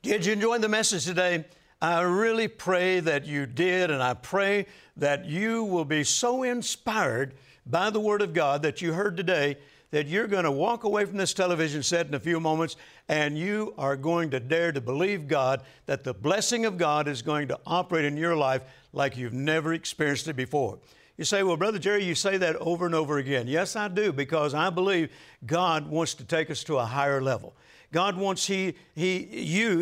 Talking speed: 200 wpm